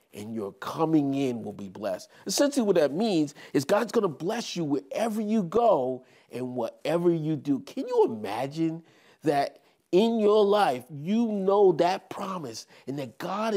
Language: English